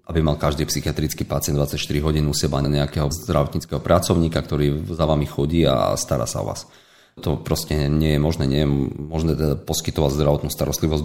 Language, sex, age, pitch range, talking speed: Slovak, male, 40-59, 75-85 Hz, 180 wpm